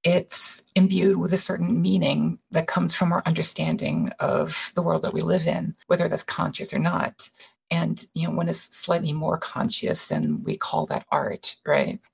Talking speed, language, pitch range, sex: 185 wpm, English, 160-195 Hz, female